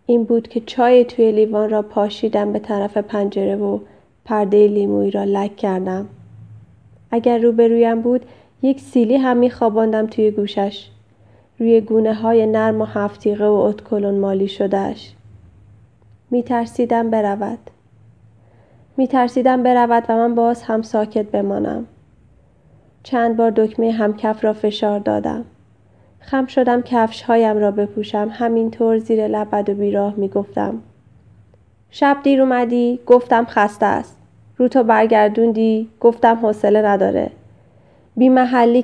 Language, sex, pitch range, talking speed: Persian, female, 200-235 Hz, 120 wpm